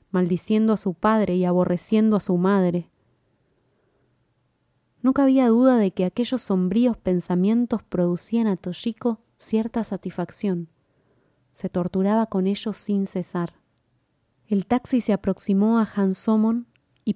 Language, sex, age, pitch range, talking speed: Spanish, female, 20-39, 180-220 Hz, 120 wpm